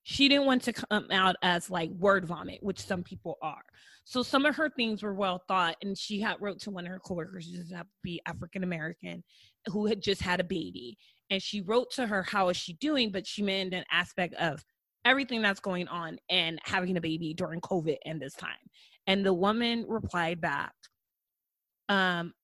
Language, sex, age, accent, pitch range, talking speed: English, female, 20-39, American, 175-210 Hz, 205 wpm